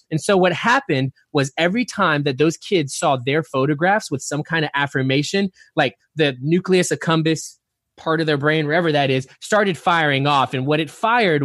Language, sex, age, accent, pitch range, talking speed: English, male, 20-39, American, 135-175 Hz, 190 wpm